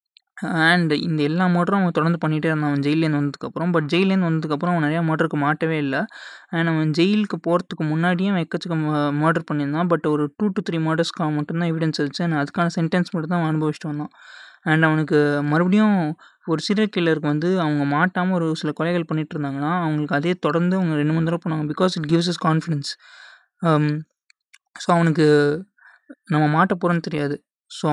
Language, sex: Tamil, male